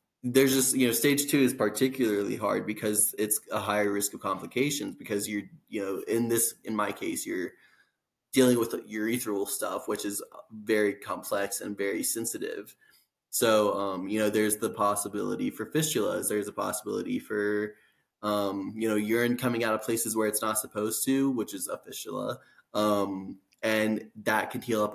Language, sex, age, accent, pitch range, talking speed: English, male, 20-39, American, 105-115 Hz, 180 wpm